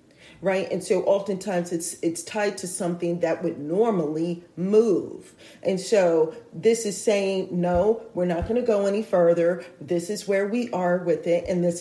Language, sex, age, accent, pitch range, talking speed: English, female, 40-59, American, 170-200 Hz, 180 wpm